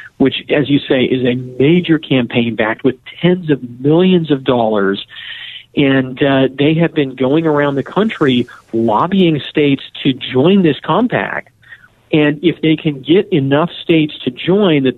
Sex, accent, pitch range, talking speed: male, American, 130-165 Hz, 160 wpm